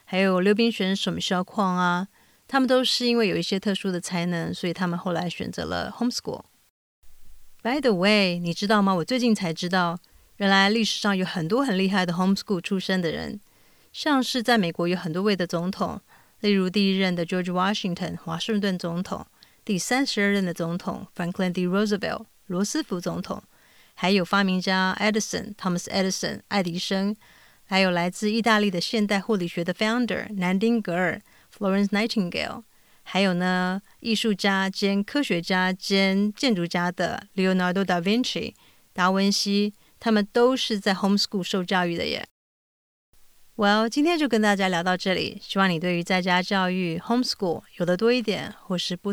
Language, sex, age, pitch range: Chinese, female, 30-49, 180-210 Hz